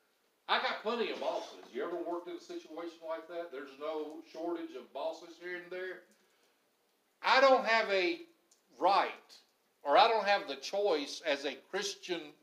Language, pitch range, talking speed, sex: English, 160-245 Hz, 170 wpm, male